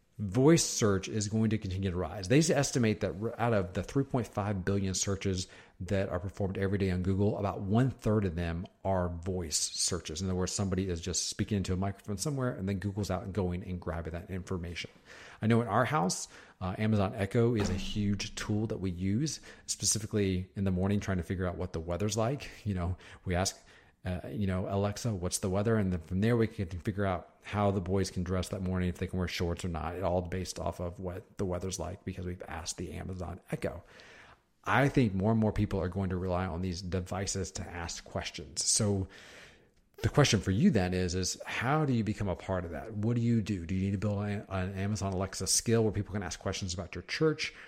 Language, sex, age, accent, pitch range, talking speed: English, male, 40-59, American, 90-110 Hz, 225 wpm